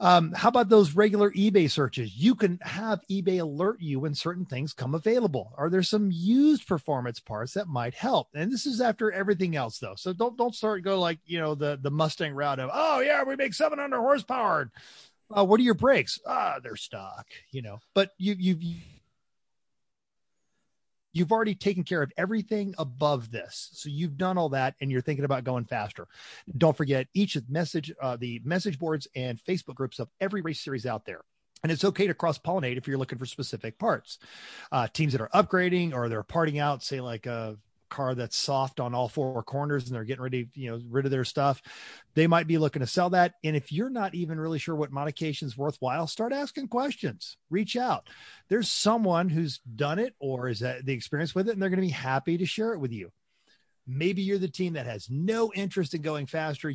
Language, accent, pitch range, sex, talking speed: English, American, 135-195 Hz, male, 215 wpm